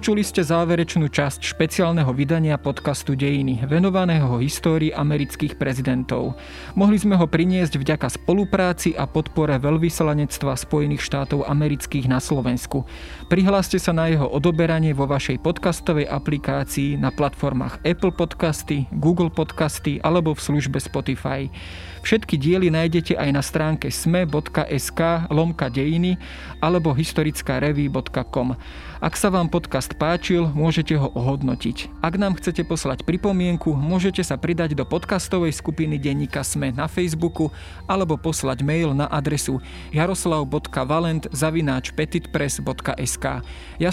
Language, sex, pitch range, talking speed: Slovak, male, 140-170 Hz, 115 wpm